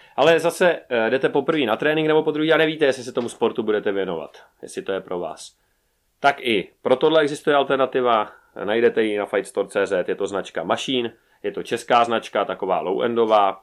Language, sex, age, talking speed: Czech, male, 30-49, 185 wpm